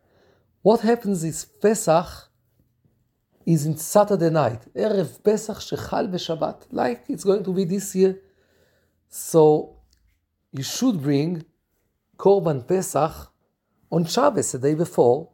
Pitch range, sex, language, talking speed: 145-205 Hz, male, English, 115 wpm